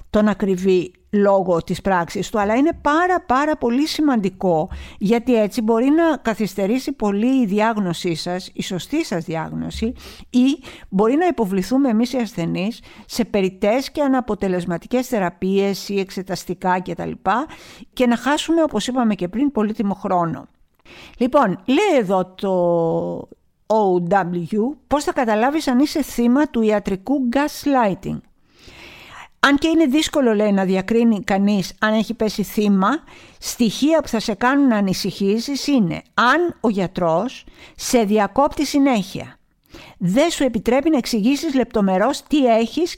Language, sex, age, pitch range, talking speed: Greek, female, 50-69, 195-275 Hz, 135 wpm